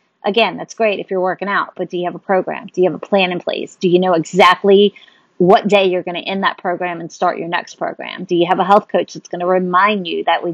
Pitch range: 185-230 Hz